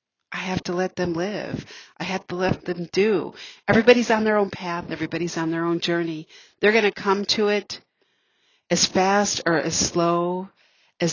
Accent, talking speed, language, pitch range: American, 185 wpm, English, 170-205 Hz